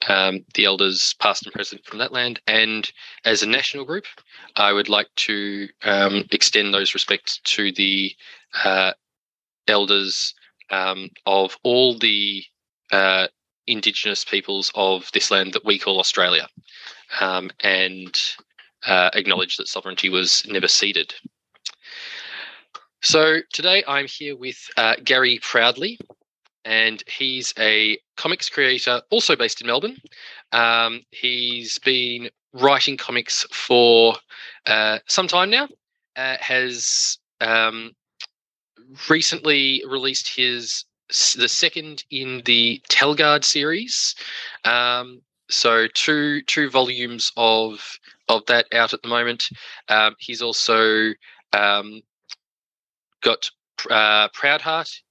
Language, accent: English, Australian